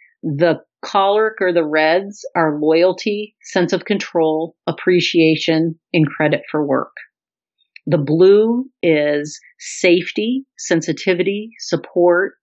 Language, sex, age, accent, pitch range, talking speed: English, female, 40-59, American, 155-190 Hz, 100 wpm